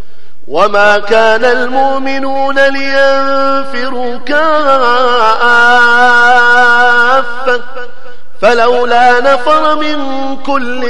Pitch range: 220-275 Hz